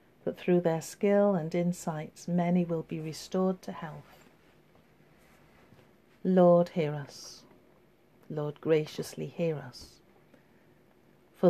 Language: English